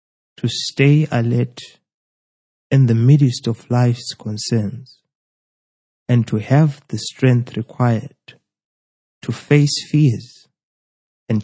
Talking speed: 100 wpm